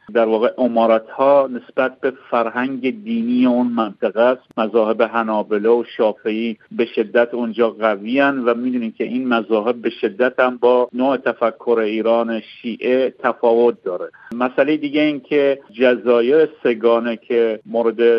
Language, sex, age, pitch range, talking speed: Persian, male, 50-69, 115-130 Hz, 140 wpm